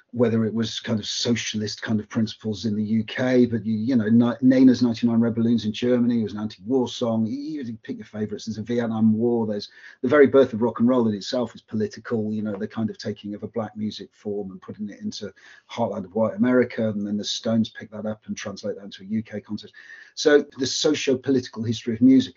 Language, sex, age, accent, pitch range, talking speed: English, male, 40-59, British, 110-130 Hz, 230 wpm